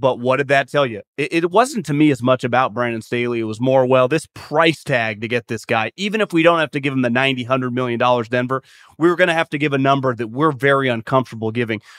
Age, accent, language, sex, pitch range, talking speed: 30-49, American, English, male, 125-170 Hz, 270 wpm